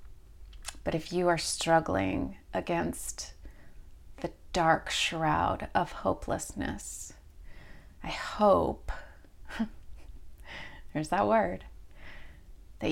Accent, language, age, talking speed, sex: American, English, 30-49, 80 wpm, female